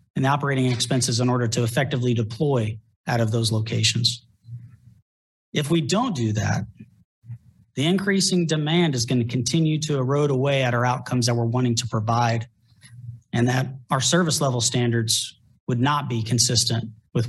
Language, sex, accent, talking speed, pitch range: English, male, American, 165 wpm, 120-160 Hz